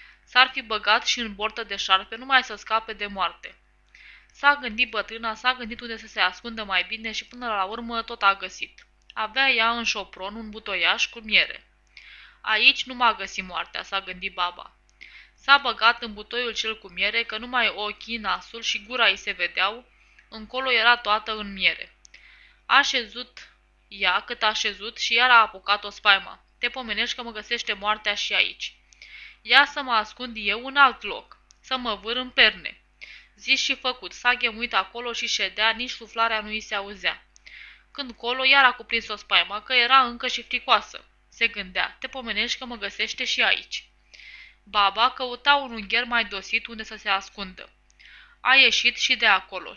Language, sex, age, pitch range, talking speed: Romanian, female, 20-39, 210-245 Hz, 180 wpm